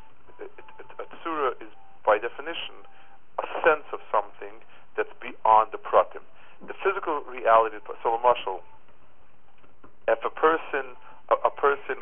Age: 50-69